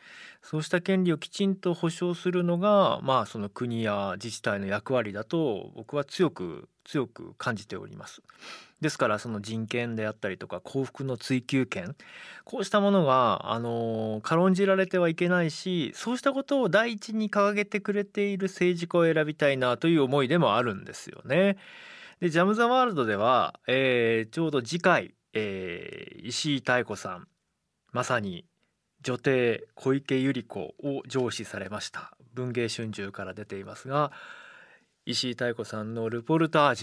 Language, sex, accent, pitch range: Japanese, male, native, 115-180 Hz